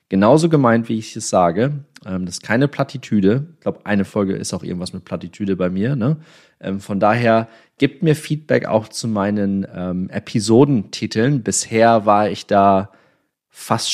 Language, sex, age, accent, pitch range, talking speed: German, male, 30-49, German, 95-125 Hz, 155 wpm